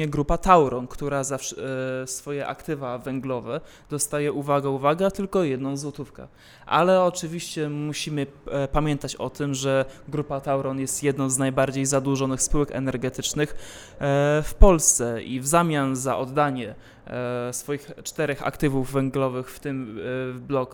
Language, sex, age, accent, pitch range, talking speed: Polish, male, 20-39, native, 130-150 Hz, 130 wpm